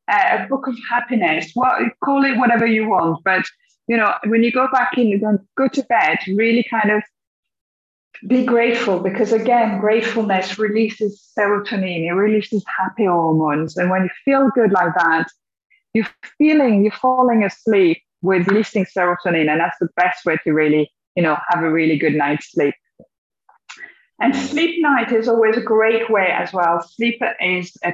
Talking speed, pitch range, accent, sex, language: 170 wpm, 185-235 Hz, British, female, English